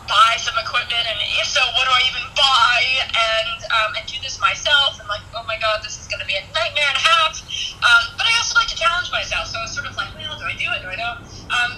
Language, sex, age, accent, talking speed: English, female, 20-39, American, 275 wpm